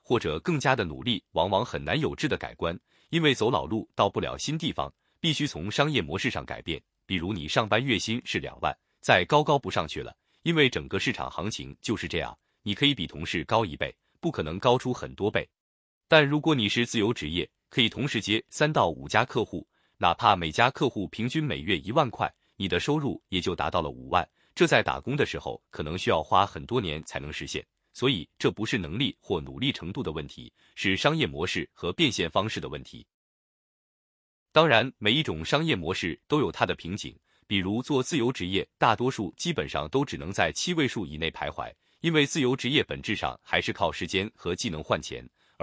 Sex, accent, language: male, native, Chinese